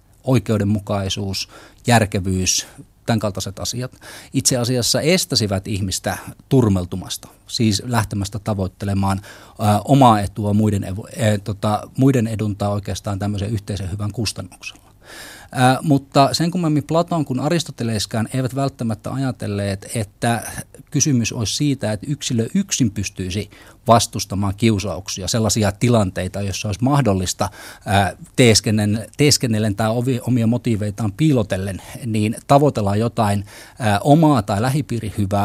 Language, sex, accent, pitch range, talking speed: Finnish, male, native, 105-130 Hz, 110 wpm